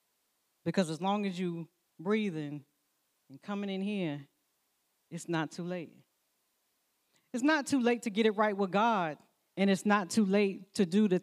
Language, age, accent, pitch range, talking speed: English, 40-59, American, 185-250 Hz, 170 wpm